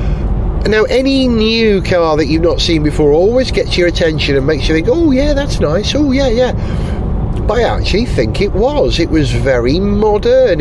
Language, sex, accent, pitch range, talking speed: English, male, British, 130-200 Hz, 190 wpm